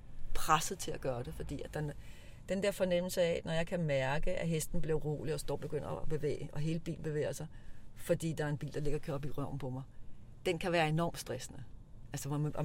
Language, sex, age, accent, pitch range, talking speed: Danish, female, 40-59, native, 130-165 Hz, 245 wpm